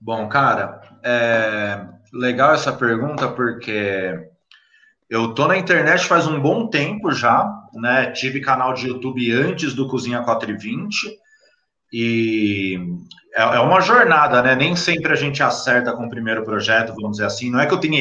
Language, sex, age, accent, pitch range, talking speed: Portuguese, male, 30-49, Brazilian, 120-170 Hz, 155 wpm